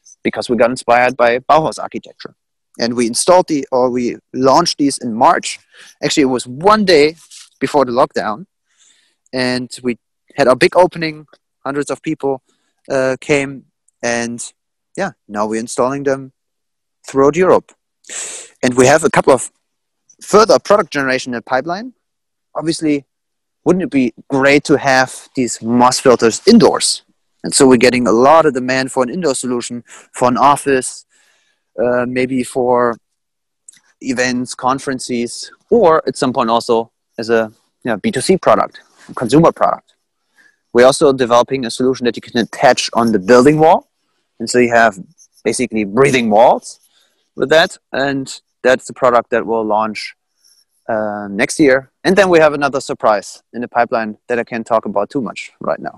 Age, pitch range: 30-49, 120-140 Hz